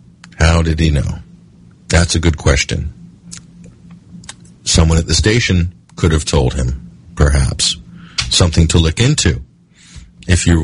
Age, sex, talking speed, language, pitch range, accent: 50-69, male, 135 wpm, English, 85-105 Hz, American